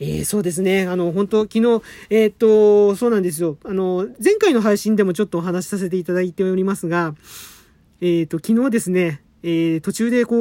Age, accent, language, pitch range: 40-59, native, Japanese, 170-225 Hz